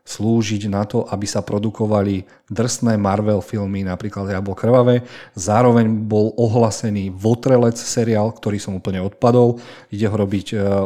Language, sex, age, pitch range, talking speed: Slovak, male, 40-59, 100-120 Hz, 135 wpm